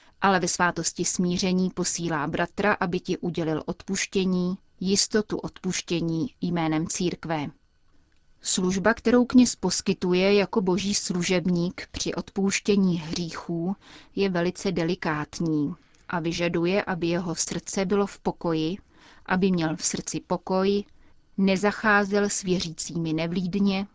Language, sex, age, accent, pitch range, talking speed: Czech, female, 30-49, native, 170-195 Hz, 110 wpm